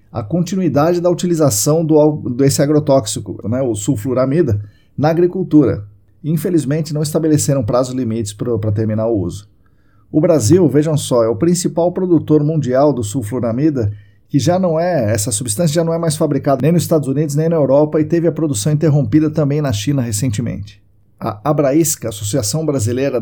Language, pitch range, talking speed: Portuguese, 115-155 Hz, 165 wpm